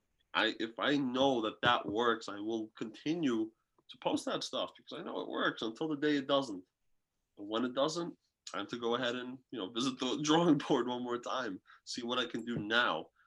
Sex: male